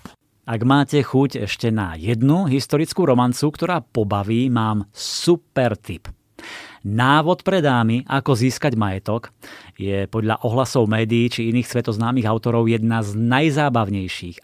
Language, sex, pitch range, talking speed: Slovak, male, 105-135 Hz, 125 wpm